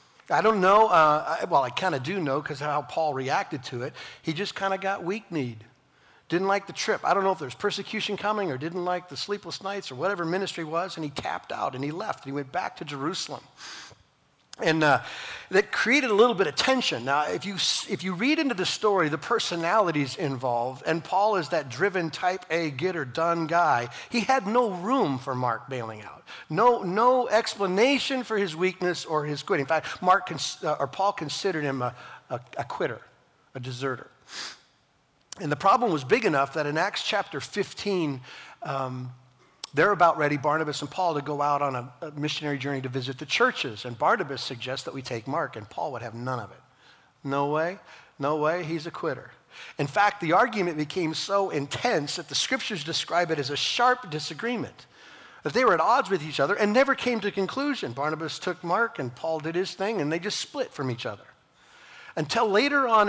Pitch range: 145-200 Hz